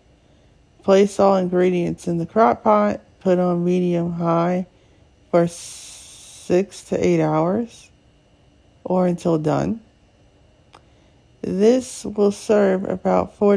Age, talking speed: 50-69, 105 wpm